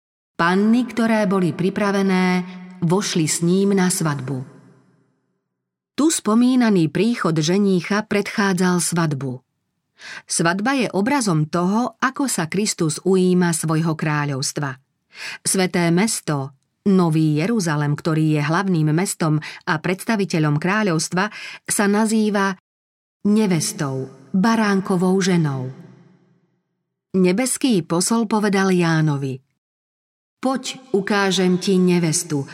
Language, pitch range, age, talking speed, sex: Slovak, 160-205 Hz, 40-59, 90 wpm, female